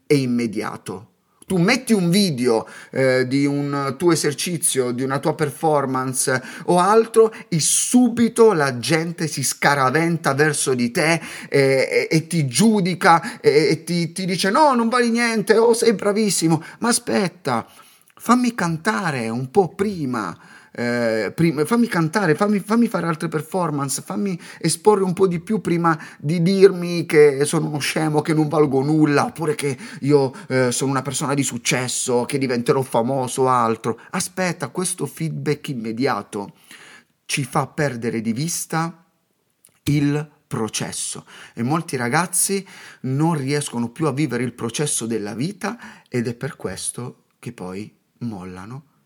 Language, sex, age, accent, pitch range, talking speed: Italian, male, 30-49, native, 135-185 Hz, 145 wpm